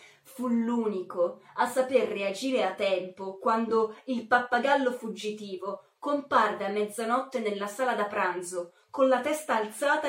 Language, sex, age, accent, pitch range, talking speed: Italian, female, 20-39, native, 200-255 Hz, 130 wpm